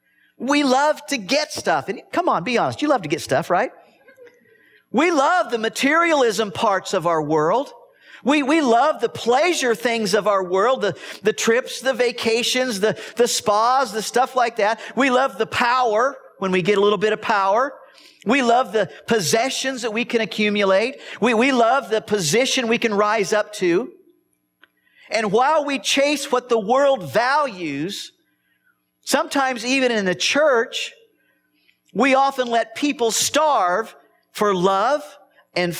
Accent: American